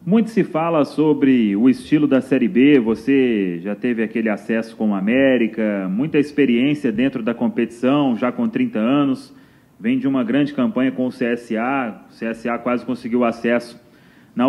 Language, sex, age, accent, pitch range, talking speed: Portuguese, male, 30-49, Brazilian, 130-165 Hz, 165 wpm